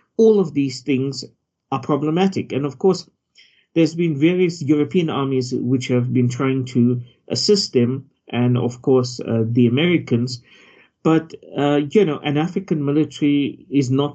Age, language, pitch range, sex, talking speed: 50-69, English, 125-155 Hz, male, 155 wpm